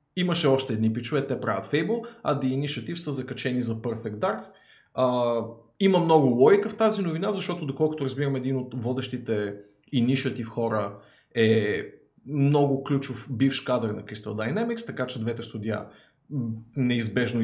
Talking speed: 150 wpm